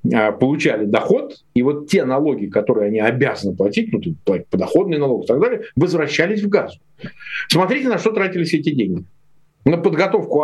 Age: 50-69